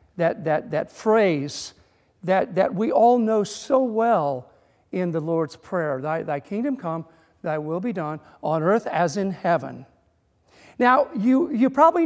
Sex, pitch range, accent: male, 170-255 Hz, American